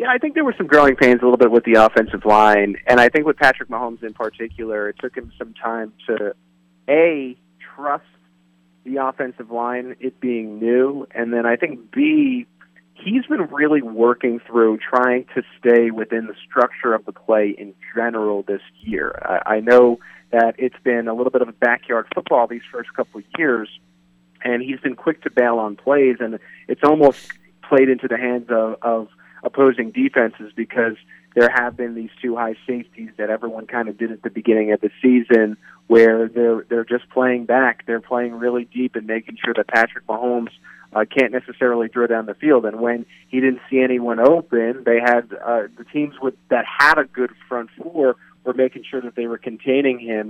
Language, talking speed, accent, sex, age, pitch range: English, 195 wpm, American, male, 30-49, 115-130 Hz